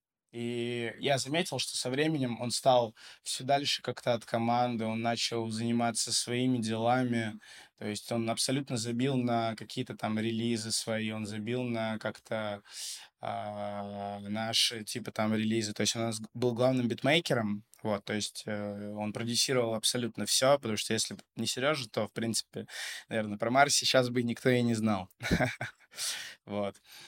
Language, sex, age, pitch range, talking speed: Russian, male, 20-39, 110-130 Hz, 150 wpm